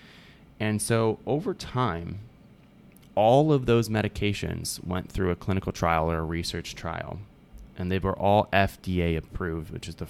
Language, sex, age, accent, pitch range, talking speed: English, male, 20-39, American, 90-105 Hz, 155 wpm